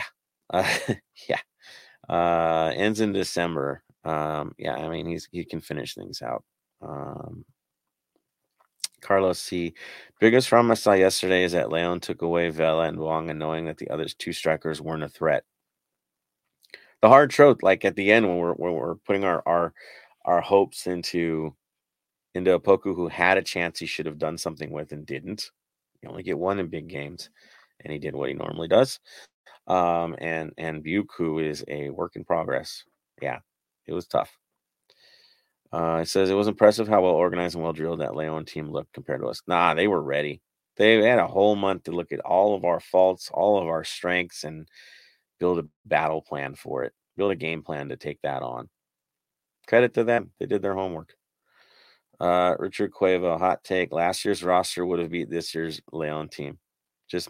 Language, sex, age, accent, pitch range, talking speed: English, male, 30-49, American, 80-95 Hz, 185 wpm